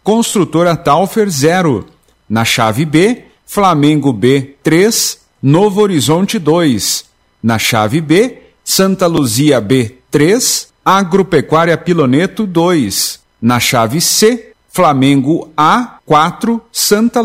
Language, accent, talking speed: Portuguese, Brazilian, 100 wpm